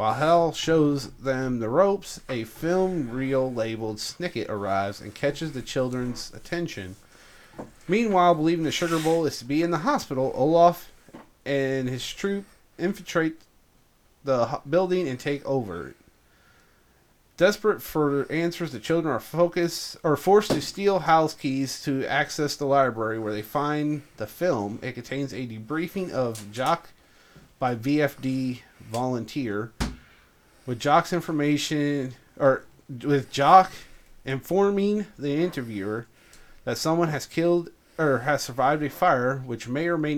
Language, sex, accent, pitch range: English, male, American, 125-165 Hz